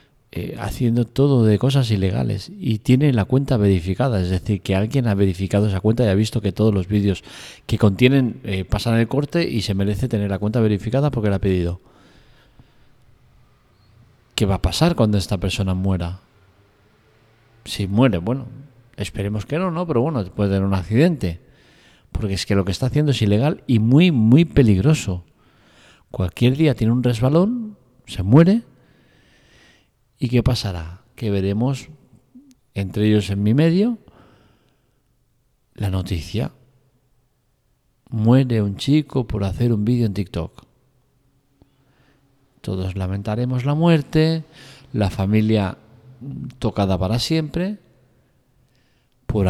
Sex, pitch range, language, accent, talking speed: male, 100-130 Hz, Spanish, Spanish, 140 wpm